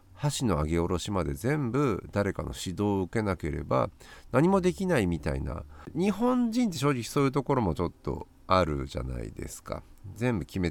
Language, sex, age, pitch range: Japanese, male, 50-69, 80-135 Hz